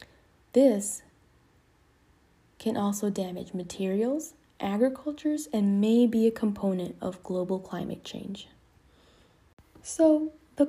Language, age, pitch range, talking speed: English, 20-39, 185-255 Hz, 95 wpm